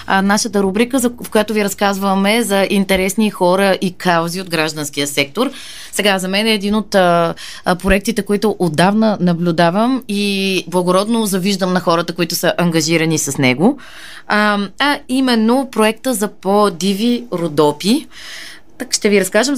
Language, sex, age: Bulgarian, female, 20-39